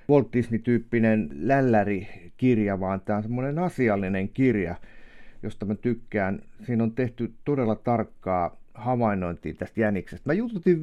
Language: Finnish